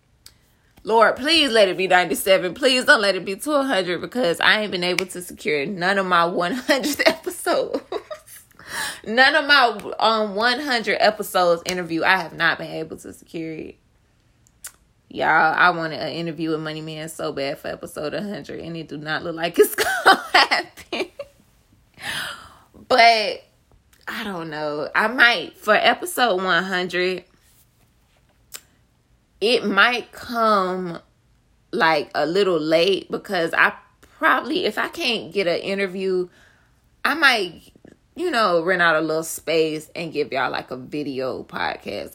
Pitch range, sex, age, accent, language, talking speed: 165-230 Hz, female, 20-39, American, English, 145 wpm